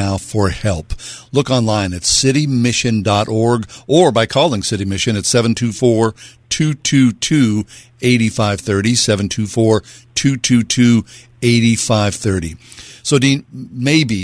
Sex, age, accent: male, 50-69, American